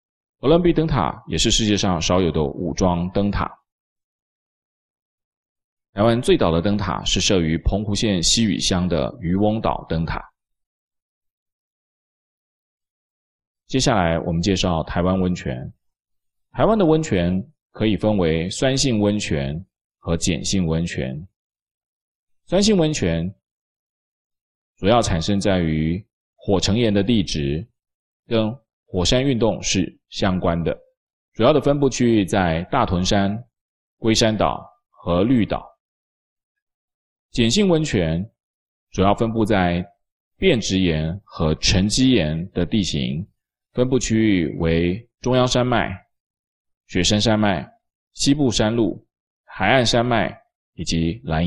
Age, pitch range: 20-39, 85-115 Hz